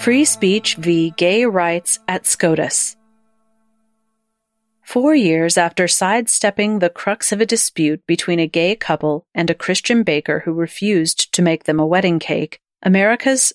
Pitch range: 170-220 Hz